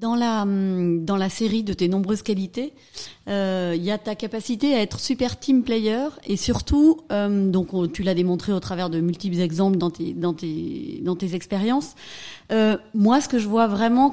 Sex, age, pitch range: female, 30-49, 180-225 Hz